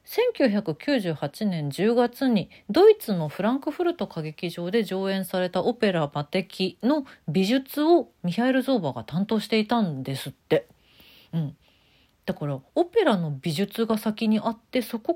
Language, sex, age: Japanese, female, 40-59